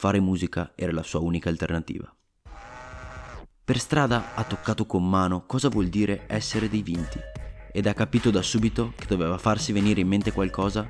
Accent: native